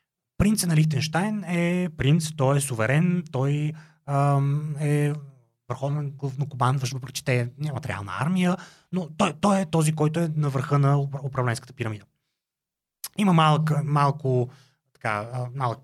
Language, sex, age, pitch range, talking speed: Bulgarian, male, 30-49, 130-155 Hz, 150 wpm